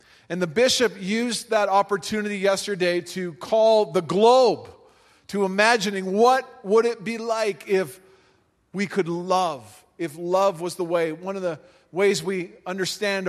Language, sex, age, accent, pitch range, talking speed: English, male, 40-59, American, 165-205 Hz, 150 wpm